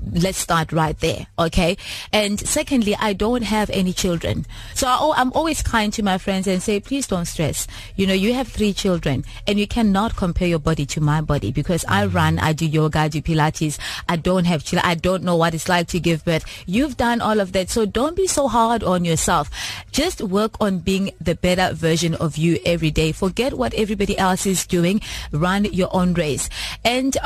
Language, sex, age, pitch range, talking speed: English, female, 20-39, 170-230 Hz, 210 wpm